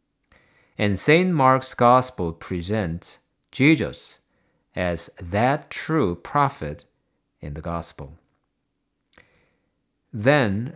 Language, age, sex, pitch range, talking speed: English, 50-69, male, 90-140 Hz, 80 wpm